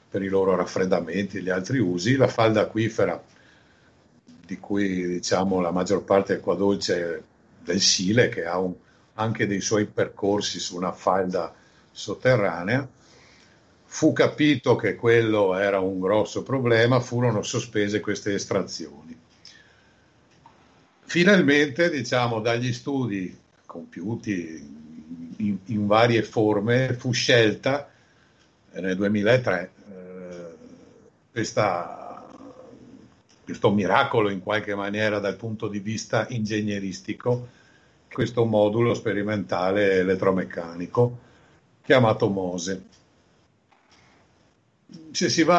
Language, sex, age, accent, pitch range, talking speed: Italian, male, 60-79, native, 95-120 Hz, 105 wpm